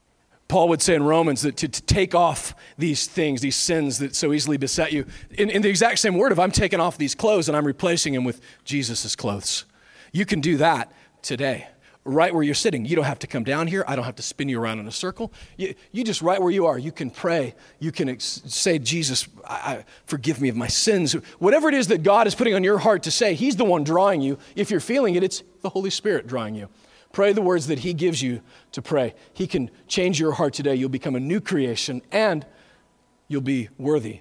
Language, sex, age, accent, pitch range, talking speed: English, male, 40-59, American, 135-190 Hz, 235 wpm